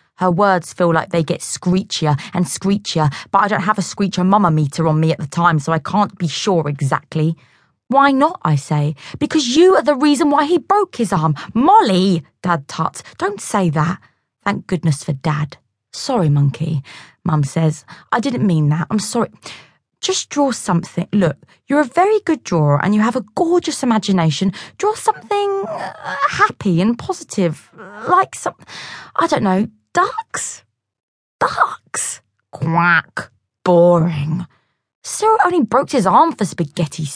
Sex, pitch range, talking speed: female, 165-265 Hz, 160 wpm